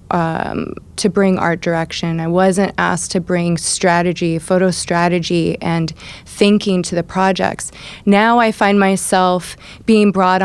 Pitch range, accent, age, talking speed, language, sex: 180-200 Hz, American, 20-39, 140 wpm, English, female